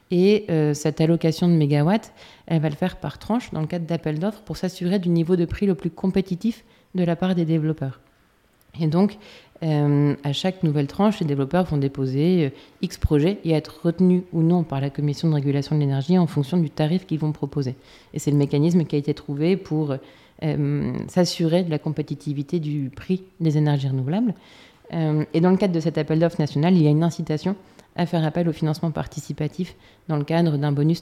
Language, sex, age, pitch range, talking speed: French, female, 30-49, 150-175 Hz, 210 wpm